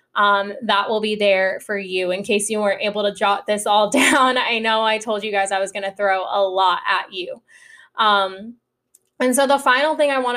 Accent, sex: American, female